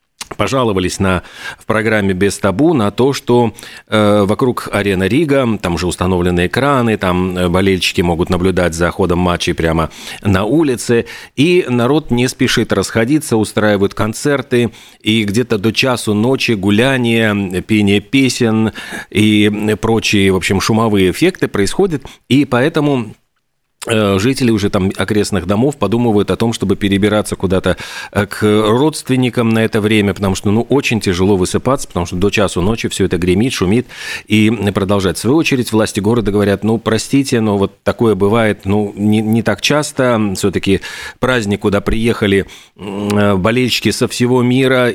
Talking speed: 145 wpm